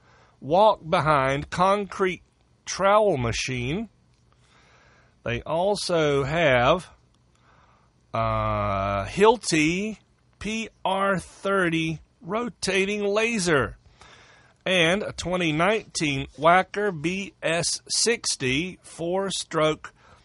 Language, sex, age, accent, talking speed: English, male, 40-59, American, 55 wpm